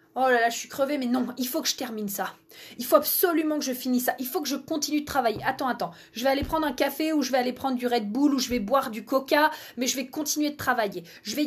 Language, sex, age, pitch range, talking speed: French, female, 20-39, 215-280 Hz, 305 wpm